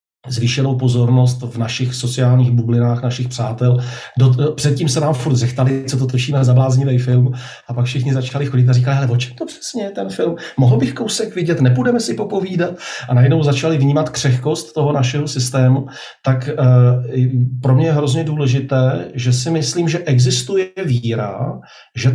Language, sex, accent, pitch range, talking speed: Czech, male, native, 120-135 Hz, 165 wpm